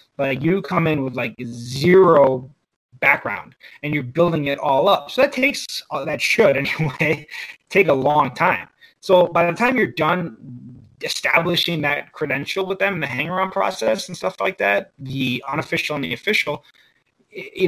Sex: male